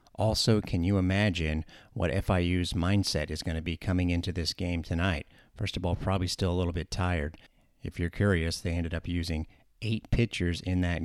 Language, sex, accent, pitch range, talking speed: English, male, American, 85-100 Hz, 195 wpm